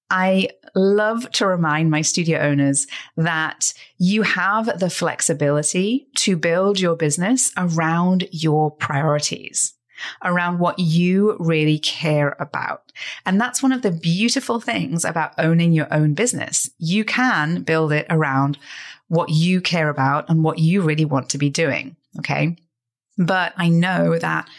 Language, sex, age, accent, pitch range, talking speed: English, female, 30-49, British, 155-180 Hz, 145 wpm